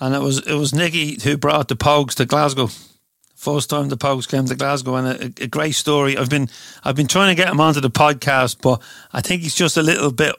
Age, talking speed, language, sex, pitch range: 40-59, 250 wpm, English, male, 125-145 Hz